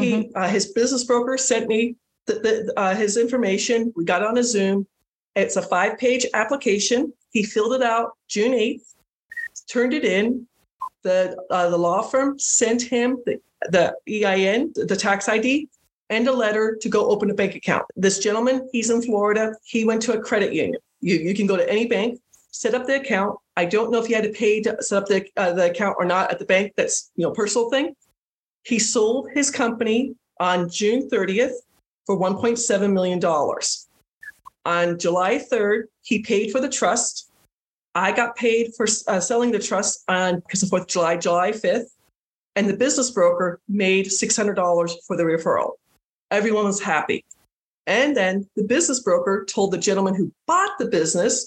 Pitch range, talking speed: 195-245 Hz, 180 wpm